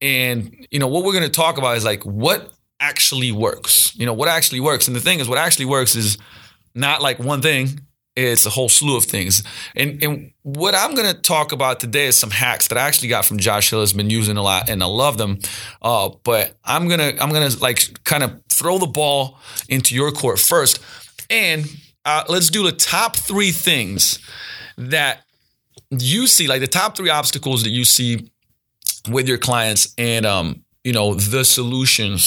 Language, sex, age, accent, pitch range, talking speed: English, male, 30-49, American, 110-145 Hz, 205 wpm